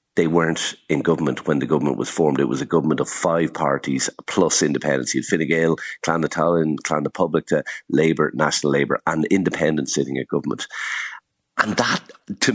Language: English